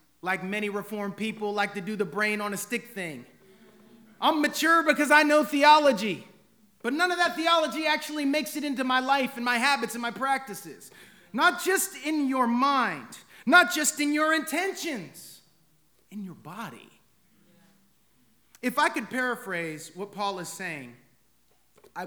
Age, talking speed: 30-49, 160 wpm